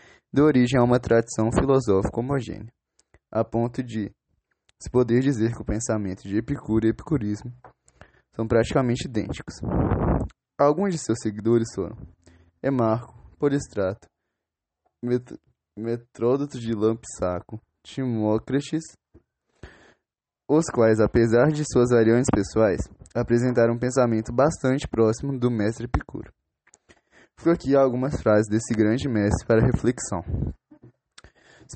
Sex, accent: male, Brazilian